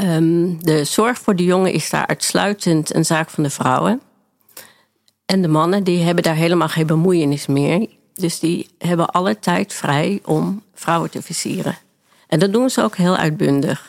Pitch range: 155-190 Hz